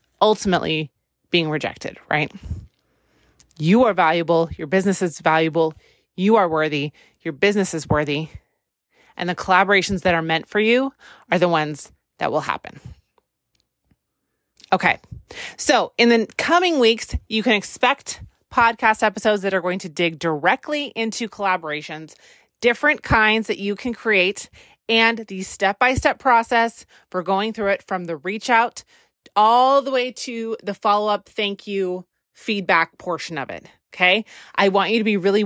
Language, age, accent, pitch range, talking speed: English, 30-49, American, 180-230 Hz, 150 wpm